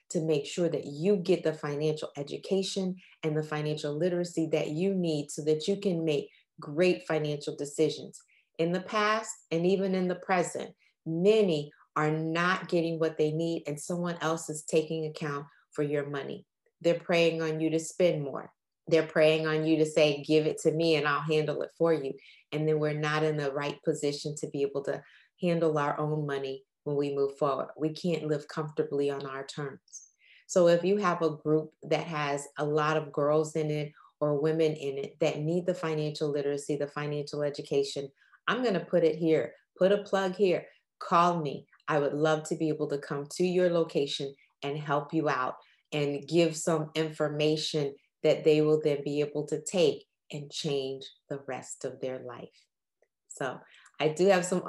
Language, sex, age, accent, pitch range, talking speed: English, female, 30-49, American, 145-170 Hz, 190 wpm